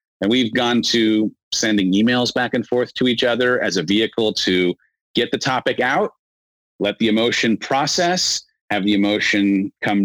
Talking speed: 165 wpm